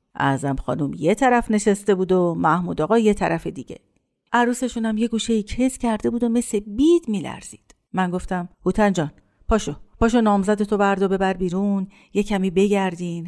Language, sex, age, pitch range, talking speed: Persian, female, 50-69, 200-255 Hz, 165 wpm